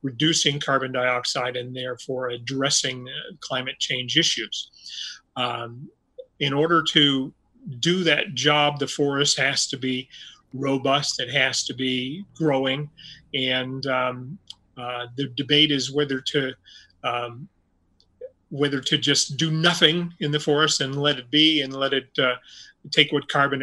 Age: 30-49